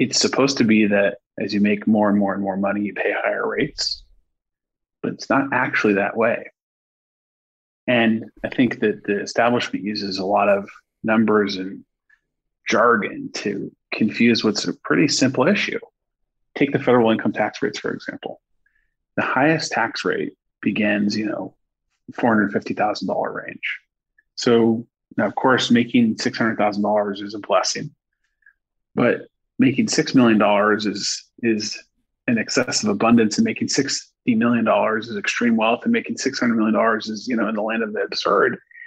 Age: 30-49